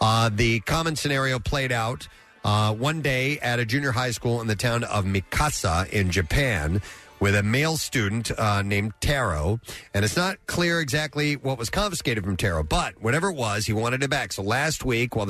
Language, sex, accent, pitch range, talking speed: English, male, American, 105-145 Hz, 195 wpm